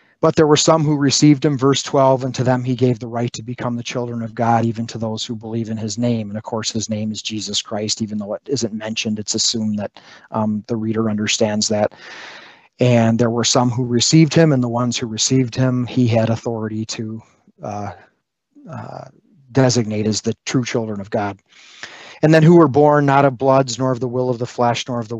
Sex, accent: male, American